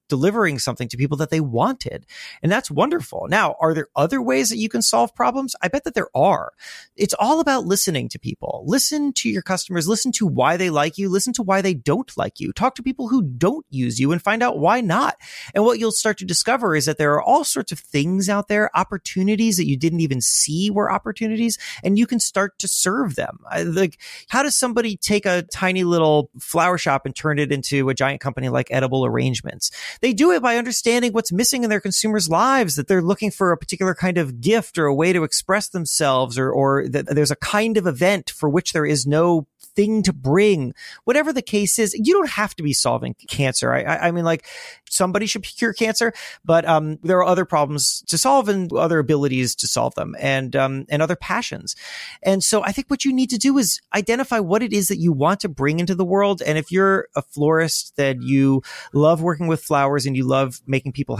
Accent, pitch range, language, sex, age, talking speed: American, 145-210 Hz, English, male, 30-49, 225 wpm